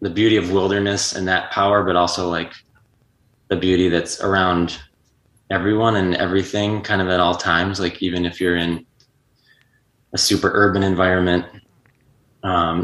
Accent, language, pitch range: American, English, 85-100 Hz